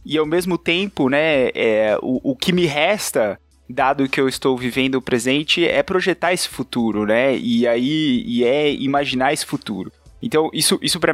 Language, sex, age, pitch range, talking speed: Portuguese, male, 20-39, 130-170 Hz, 185 wpm